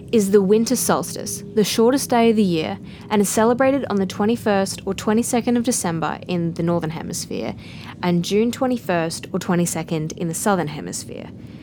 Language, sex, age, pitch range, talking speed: English, female, 20-39, 165-215 Hz, 170 wpm